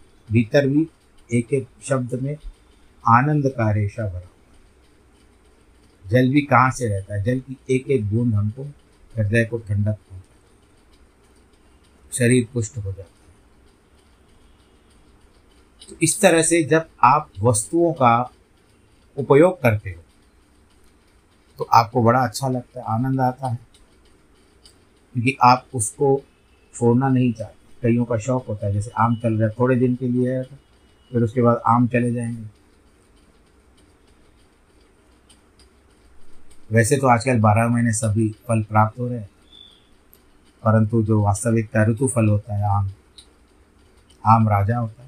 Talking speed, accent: 135 wpm, native